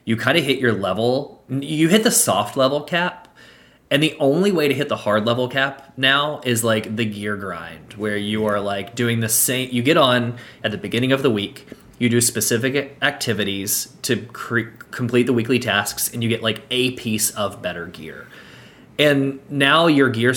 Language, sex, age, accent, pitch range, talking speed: English, male, 20-39, American, 110-135 Hz, 195 wpm